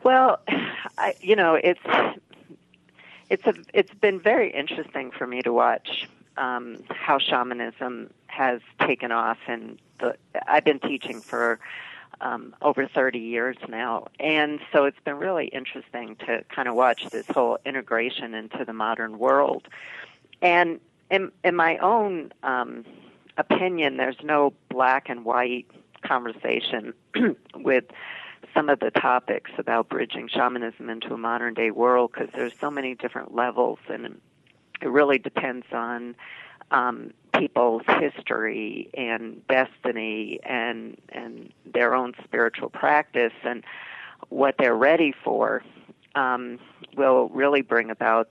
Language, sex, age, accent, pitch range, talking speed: English, female, 40-59, American, 120-145 Hz, 135 wpm